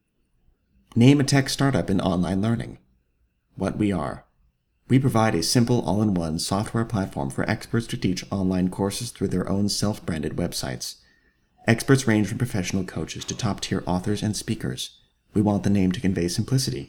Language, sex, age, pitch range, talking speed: English, male, 30-49, 85-115 Hz, 160 wpm